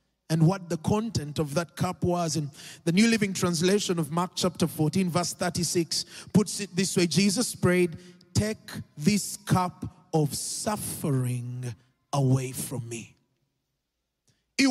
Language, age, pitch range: English, 30-49, 185-305 Hz